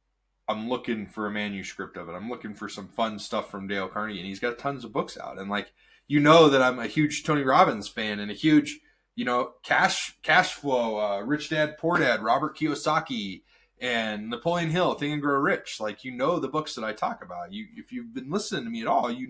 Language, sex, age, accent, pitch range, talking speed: English, male, 20-39, American, 110-175 Hz, 235 wpm